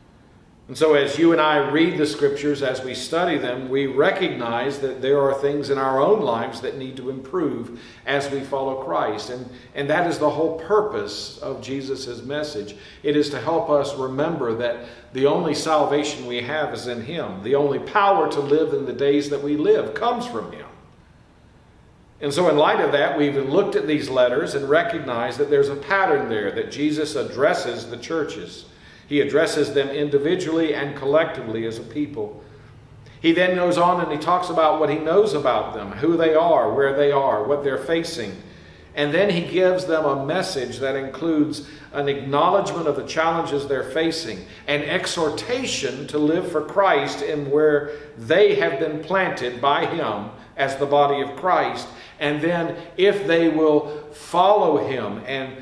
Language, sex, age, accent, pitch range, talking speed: English, male, 50-69, American, 135-165 Hz, 180 wpm